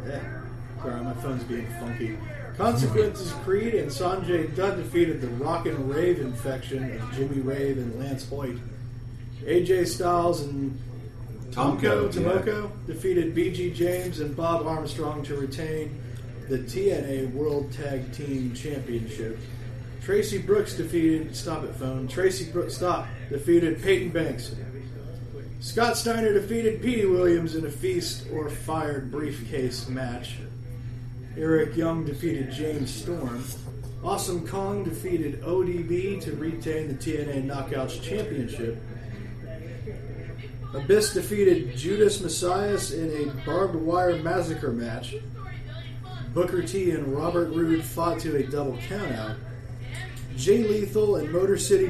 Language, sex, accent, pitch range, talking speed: English, male, American, 120-165 Hz, 125 wpm